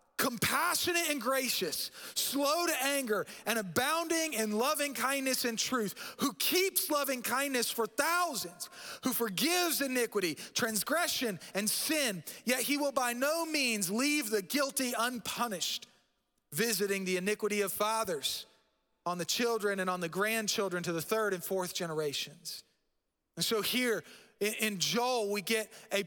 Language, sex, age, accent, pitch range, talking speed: English, male, 30-49, American, 185-245 Hz, 140 wpm